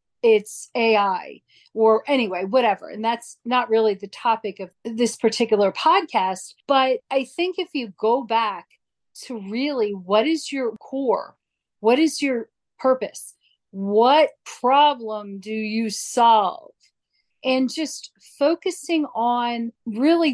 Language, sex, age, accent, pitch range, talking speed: English, female, 40-59, American, 220-280 Hz, 125 wpm